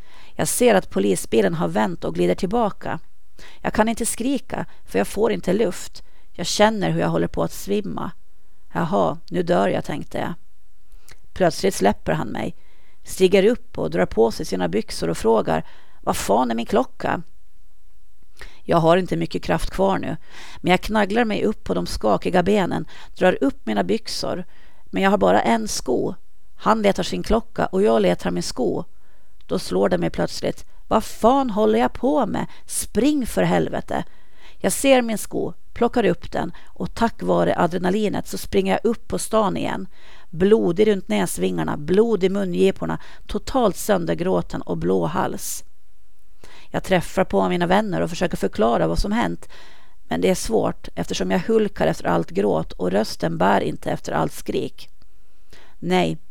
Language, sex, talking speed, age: Swedish, female, 170 wpm, 40-59